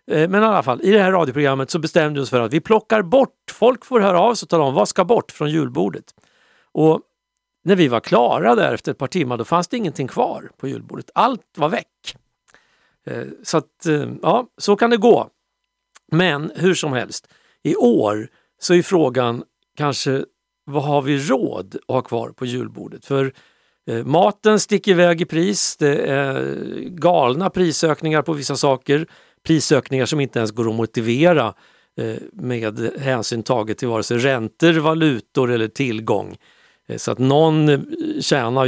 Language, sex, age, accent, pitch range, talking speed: Swedish, male, 50-69, native, 130-185 Hz, 170 wpm